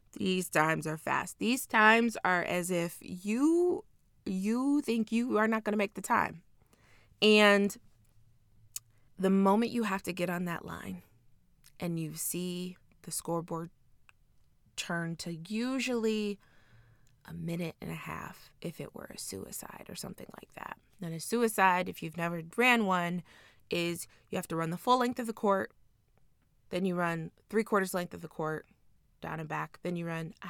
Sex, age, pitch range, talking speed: female, 20-39, 125-200 Hz, 170 wpm